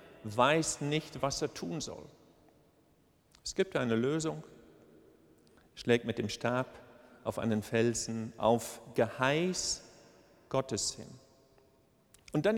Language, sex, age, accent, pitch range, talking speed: German, male, 50-69, German, 115-160 Hz, 110 wpm